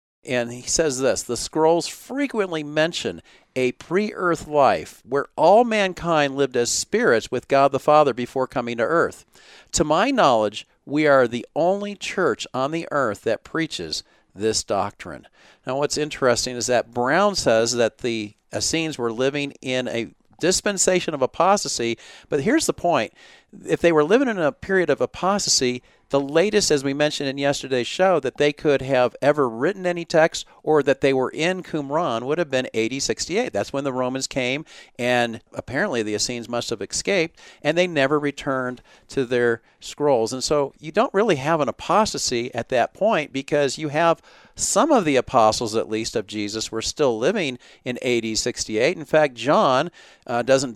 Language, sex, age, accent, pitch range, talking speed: English, male, 50-69, American, 120-155 Hz, 175 wpm